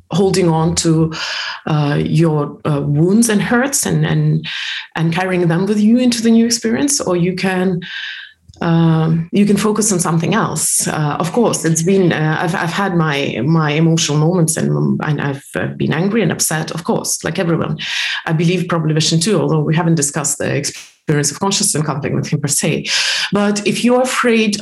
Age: 30-49